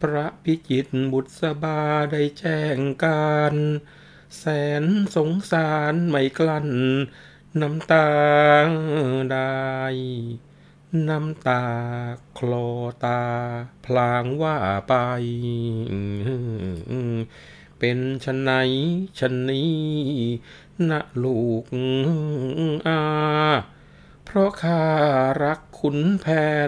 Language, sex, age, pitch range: Thai, male, 60-79, 125-155 Hz